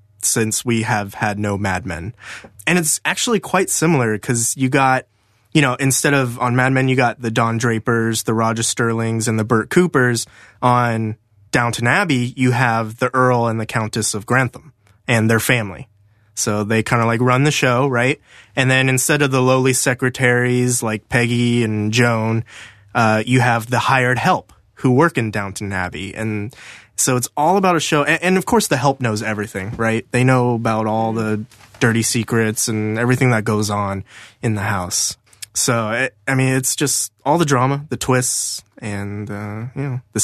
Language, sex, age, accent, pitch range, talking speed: English, male, 20-39, American, 110-130 Hz, 185 wpm